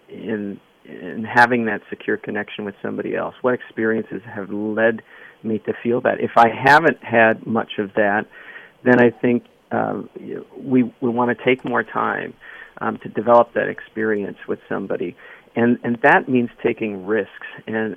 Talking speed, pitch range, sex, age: 165 wpm, 110-125 Hz, male, 40-59